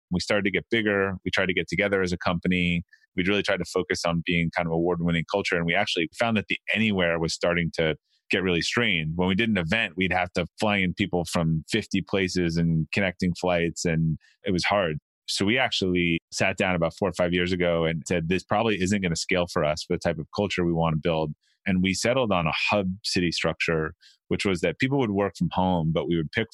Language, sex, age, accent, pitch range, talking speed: English, male, 30-49, American, 85-100 Hz, 245 wpm